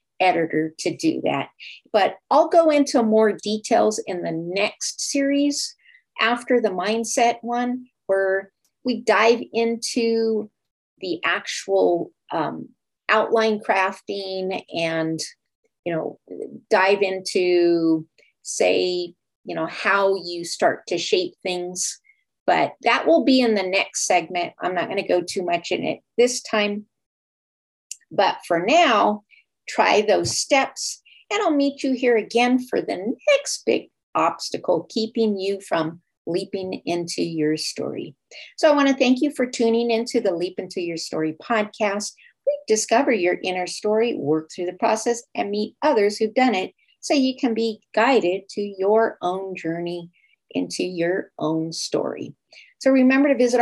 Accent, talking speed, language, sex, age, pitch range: American, 145 wpm, English, female, 50-69, 185-250 Hz